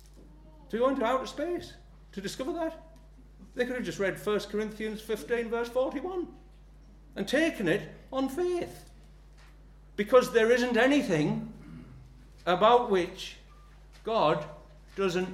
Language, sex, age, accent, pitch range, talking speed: English, male, 60-79, British, 145-210 Hz, 120 wpm